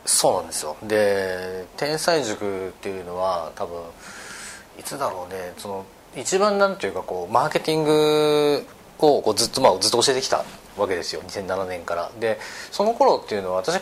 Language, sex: Japanese, male